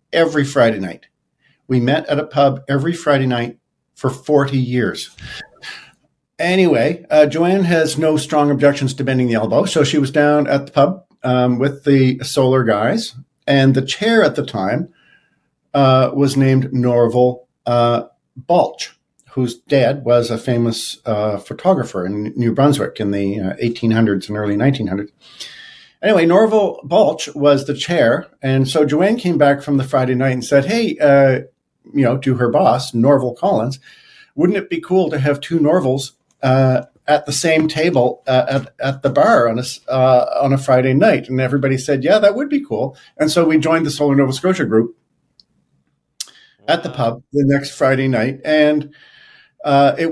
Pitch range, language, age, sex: 130-155 Hz, English, 50-69, male